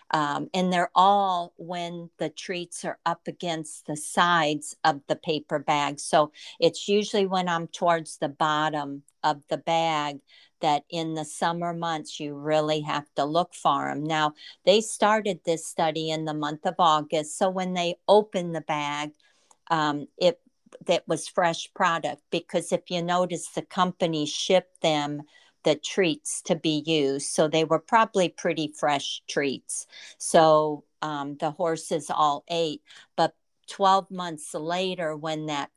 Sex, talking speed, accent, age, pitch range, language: female, 155 wpm, American, 50-69, 150-175 Hz, English